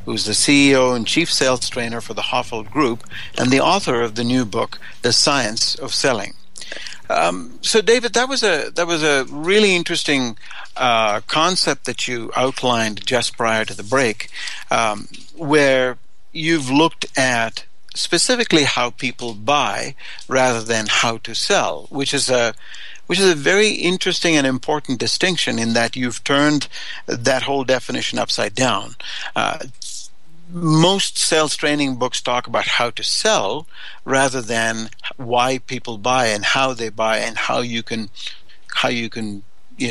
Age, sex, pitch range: 60-79, male, 115-155 Hz